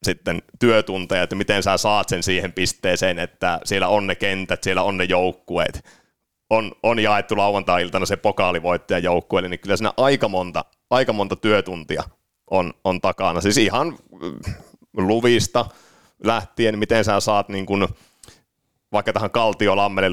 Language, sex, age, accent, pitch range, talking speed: Finnish, male, 30-49, native, 95-110 Hz, 140 wpm